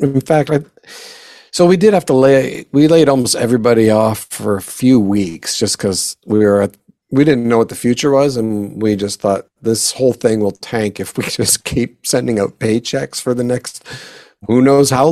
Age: 50-69